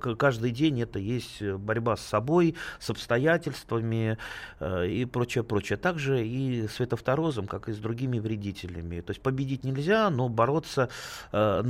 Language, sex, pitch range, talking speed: Russian, male, 105-140 Hz, 145 wpm